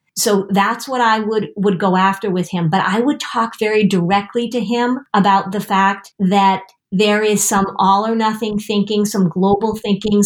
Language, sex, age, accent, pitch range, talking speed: English, female, 40-59, American, 195-235 Hz, 185 wpm